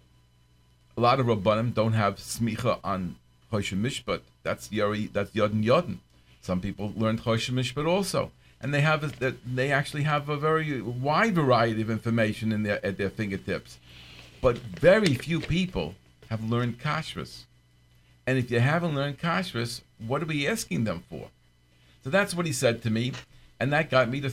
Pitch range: 100-135 Hz